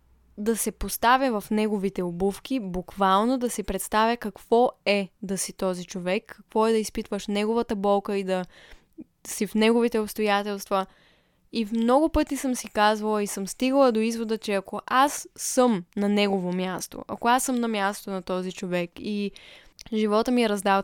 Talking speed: 175 wpm